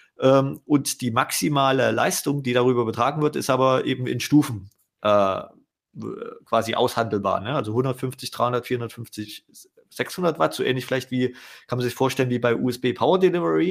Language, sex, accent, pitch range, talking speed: German, male, German, 120-140 Hz, 155 wpm